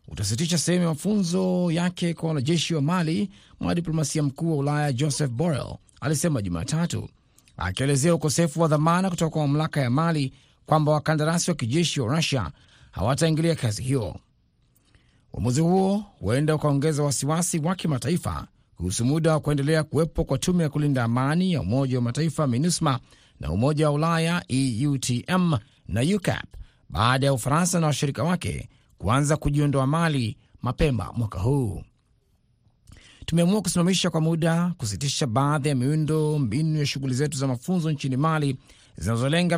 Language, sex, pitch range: Swahili, male, 125-165 Hz